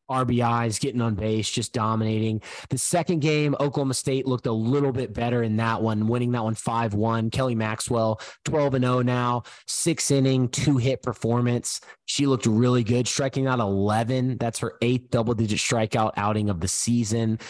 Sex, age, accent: male, 20-39, American